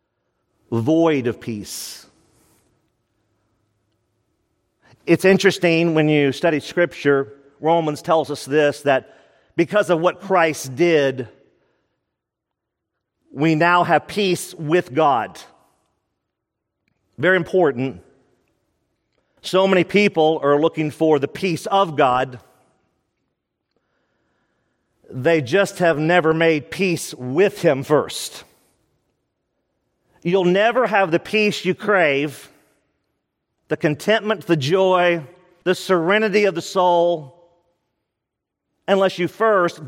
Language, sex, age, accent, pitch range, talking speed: English, male, 50-69, American, 140-190 Hz, 100 wpm